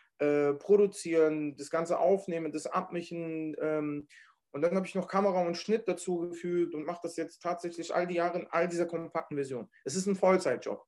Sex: male